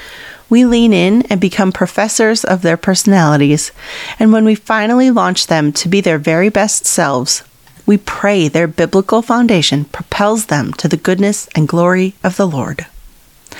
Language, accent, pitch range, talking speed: English, American, 170-220 Hz, 160 wpm